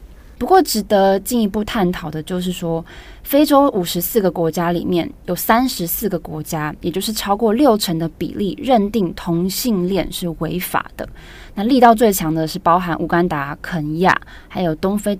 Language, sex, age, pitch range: Chinese, female, 20-39, 170-220 Hz